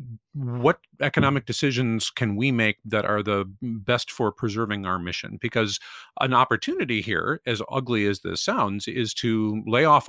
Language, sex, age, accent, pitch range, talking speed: English, male, 50-69, American, 100-130 Hz, 160 wpm